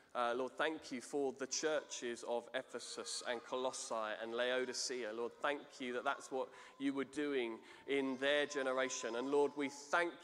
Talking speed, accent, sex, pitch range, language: 170 wpm, British, male, 120-145 Hz, English